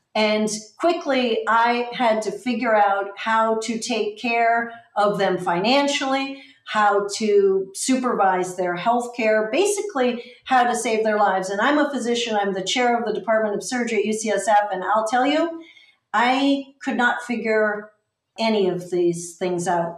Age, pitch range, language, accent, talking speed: 50-69, 200-255 Hz, English, American, 160 wpm